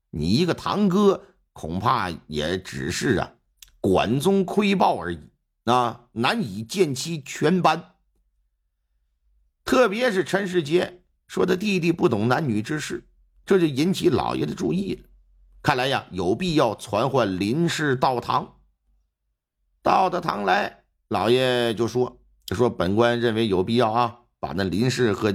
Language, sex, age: Chinese, male, 50-69